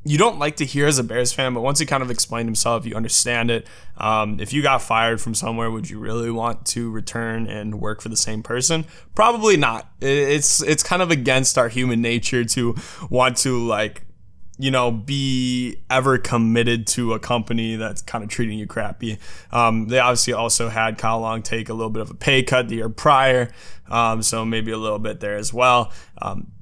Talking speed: 210 wpm